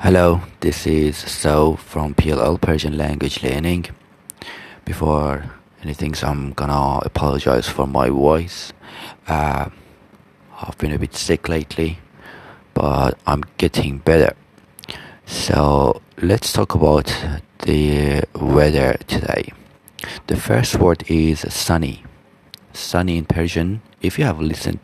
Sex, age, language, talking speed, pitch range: male, 40-59, Persian, 115 wpm, 75-85 Hz